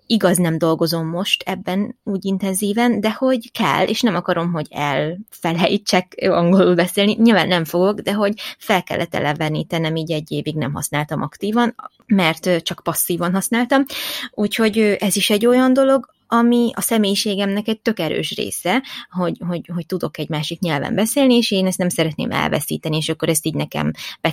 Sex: female